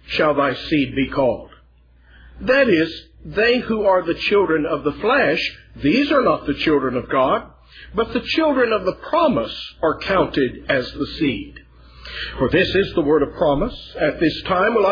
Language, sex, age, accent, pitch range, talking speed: English, male, 60-79, American, 140-215 Hz, 175 wpm